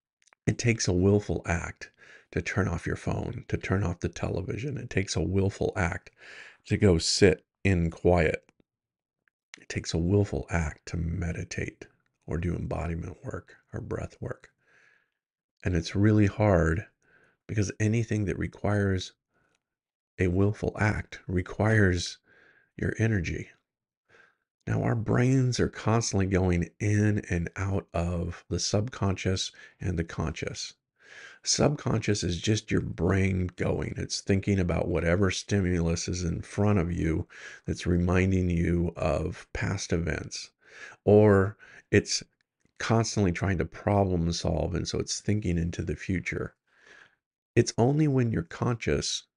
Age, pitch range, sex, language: 40-59, 85-105 Hz, male, English